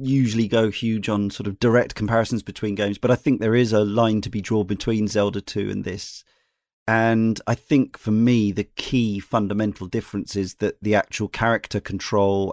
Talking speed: 190 wpm